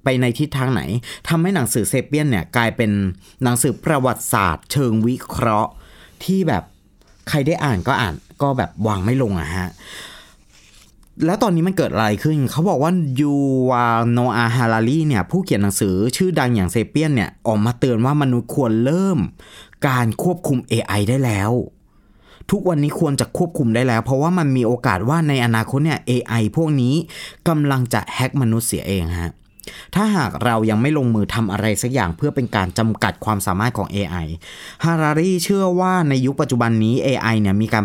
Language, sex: Thai, male